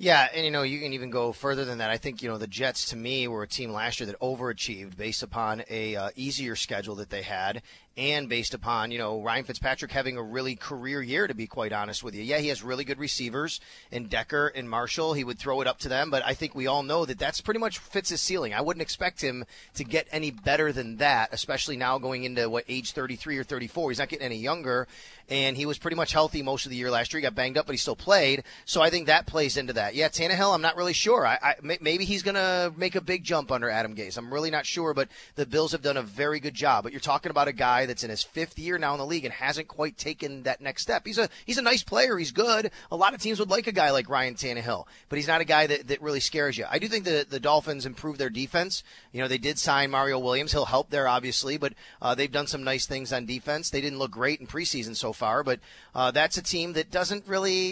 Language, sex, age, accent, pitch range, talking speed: English, male, 30-49, American, 125-160 Hz, 275 wpm